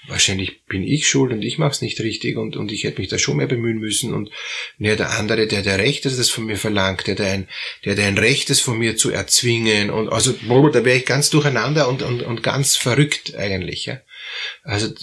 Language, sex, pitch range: German, male, 110-140 Hz